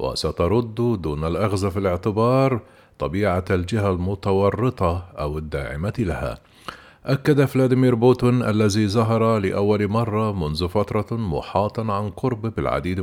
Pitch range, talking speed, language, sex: 90-115 Hz, 110 wpm, Arabic, male